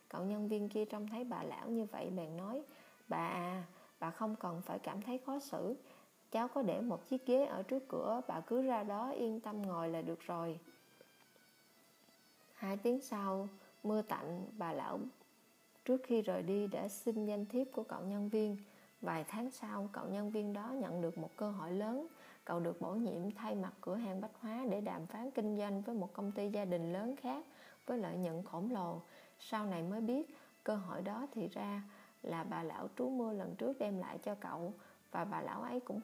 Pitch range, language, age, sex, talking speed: 190-240 Hz, Vietnamese, 20-39, female, 210 wpm